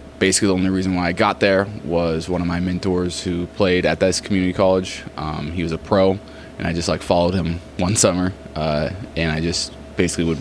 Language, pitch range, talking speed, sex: English, 80-95 Hz, 220 wpm, male